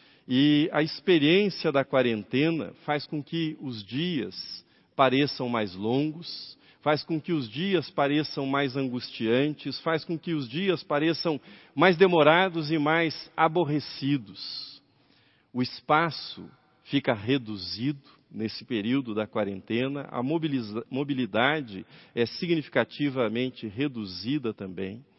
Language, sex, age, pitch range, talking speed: Portuguese, male, 50-69, 115-155 Hz, 110 wpm